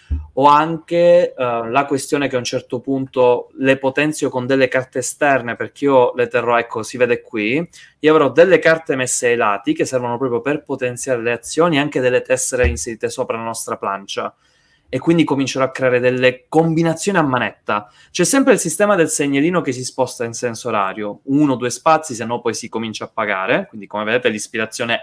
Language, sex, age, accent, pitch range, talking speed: Italian, male, 20-39, native, 120-160 Hz, 195 wpm